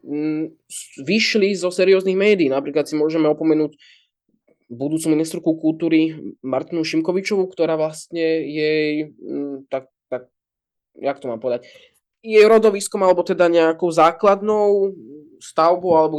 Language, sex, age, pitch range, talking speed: Slovak, male, 20-39, 145-165 Hz, 110 wpm